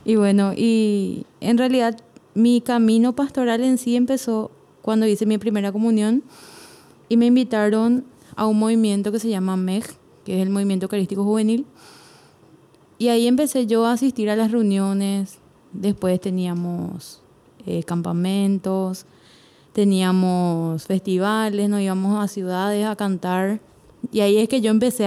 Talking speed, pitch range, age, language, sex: 140 wpm, 190-230 Hz, 20-39, Spanish, female